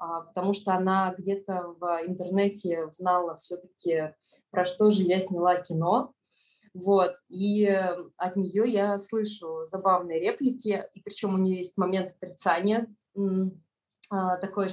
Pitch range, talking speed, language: 180-215 Hz, 120 wpm, Russian